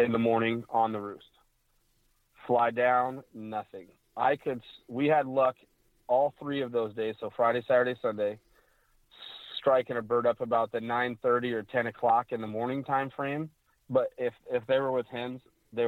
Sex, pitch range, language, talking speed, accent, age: male, 110-125 Hz, English, 180 wpm, American, 30-49